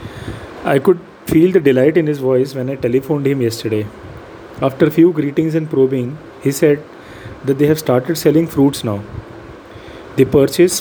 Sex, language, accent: male, English, Indian